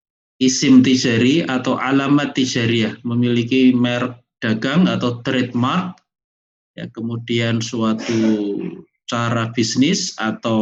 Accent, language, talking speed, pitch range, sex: native, Indonesian, 95 wpm, 110-130 Hz, male